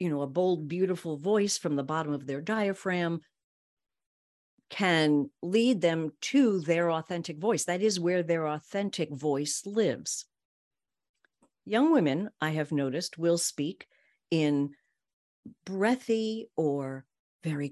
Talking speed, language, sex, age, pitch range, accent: 125 wpm, English, female, 50-69, 145-200 Hz, American